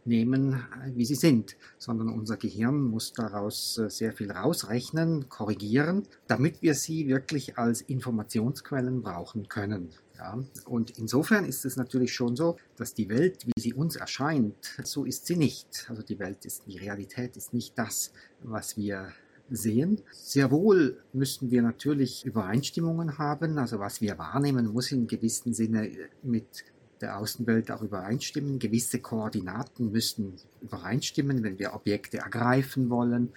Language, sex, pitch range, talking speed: German, male, 110-135 Hz, 145 wpm